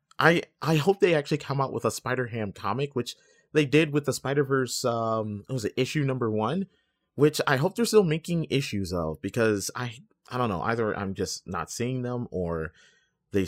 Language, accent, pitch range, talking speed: English, American, 100-130 Hz, 205 wpm